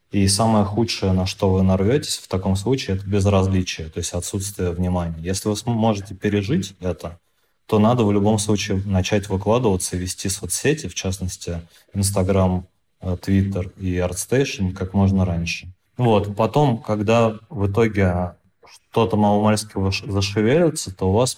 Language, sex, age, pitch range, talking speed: Russian, male, 20-39, 95-110 Hz, 145 wpm